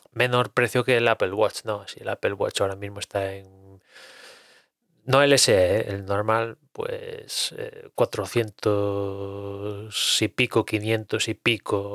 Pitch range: 105-130 Hz